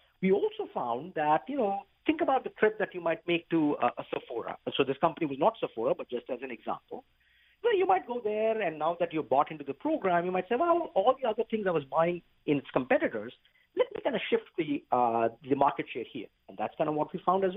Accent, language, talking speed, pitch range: Indian, English, 255 wpm, 145-225 Hz